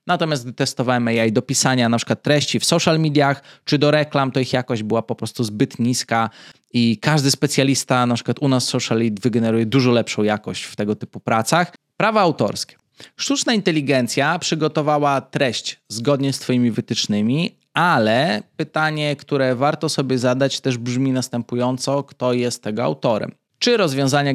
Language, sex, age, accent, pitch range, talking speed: Polish, male, 20-39, native, 120-145 Hz, 165 wpm